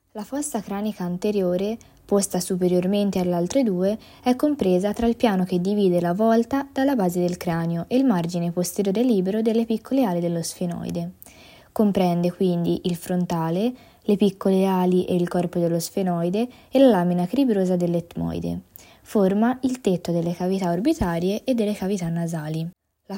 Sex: female